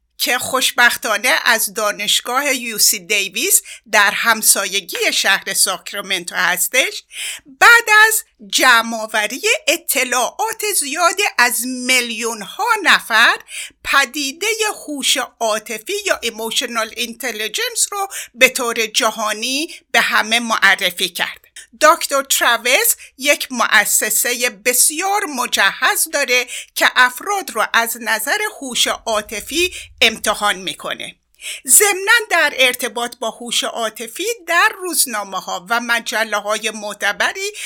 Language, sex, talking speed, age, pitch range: Persian, female, 95 wpm, 50-69, 220-345 Hz